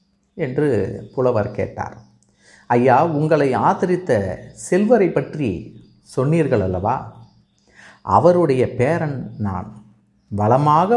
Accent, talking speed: native, 75 wpm